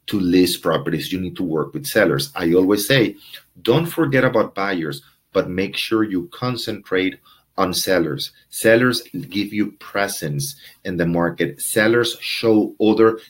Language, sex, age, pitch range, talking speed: English, male, 40-59, 90-115 Hz, 150 wpm